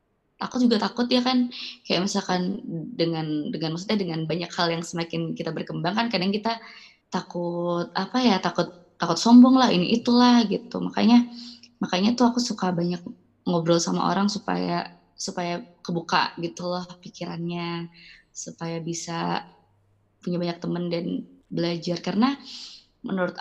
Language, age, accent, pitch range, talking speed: Indonesian, 20-39, native, 170-235 Hz, 135 wpm